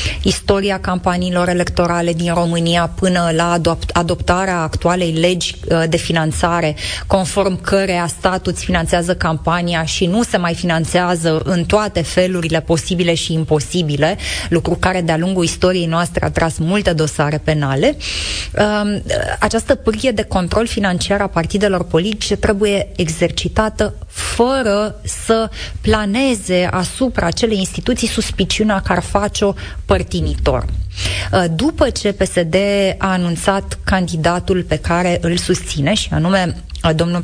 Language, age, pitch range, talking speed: Romanian, 20-39, 170-205 Hz, 115 wpm